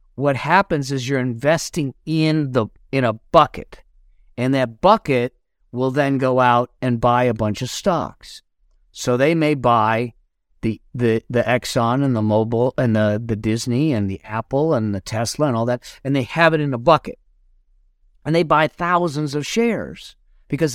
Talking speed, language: 175 wpm, English